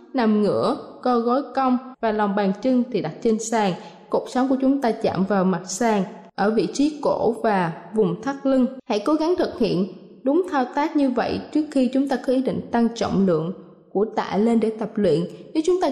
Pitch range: 220-275 Hz